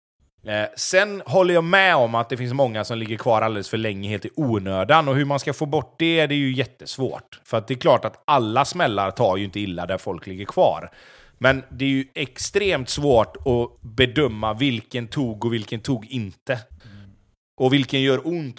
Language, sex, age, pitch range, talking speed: Swedish, male, 30-49, 115-140 Hz, 205 wpm